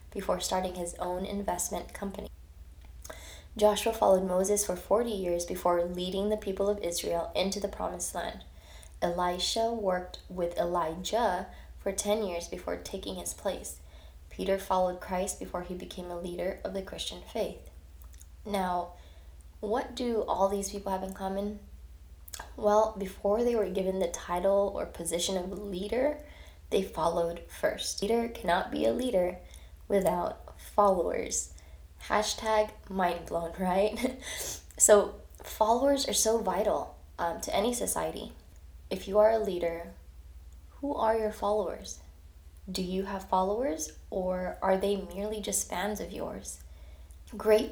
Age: 20-39